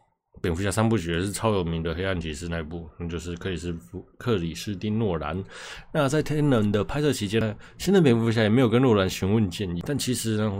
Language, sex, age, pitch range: Chinese, male, 20-39, 85-105 Hz